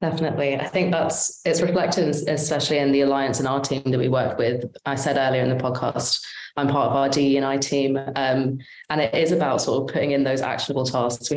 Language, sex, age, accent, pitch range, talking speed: English, female, 20-39, British, 130-150 Hz, 220 wpm